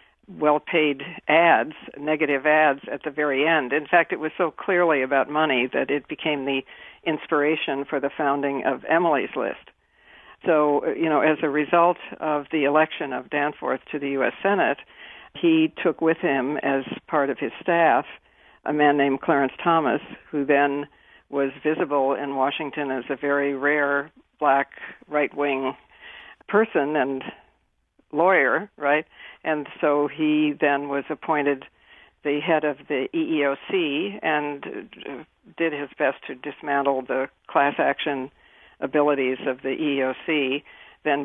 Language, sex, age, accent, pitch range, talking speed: English, female, 60-79, American, 140-160 Hz, 140 wpm